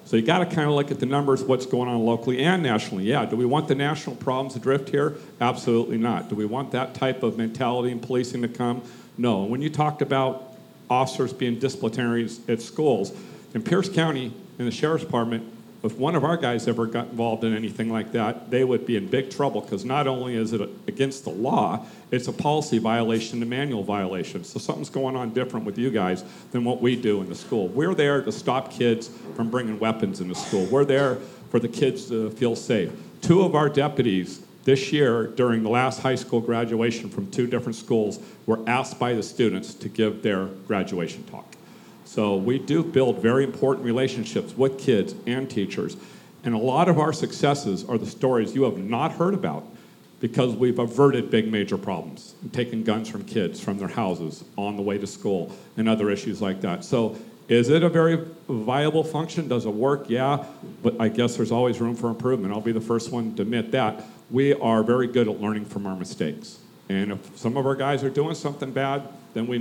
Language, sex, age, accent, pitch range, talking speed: English, male, 50-69, American, 115-135 Hz, 210 wpm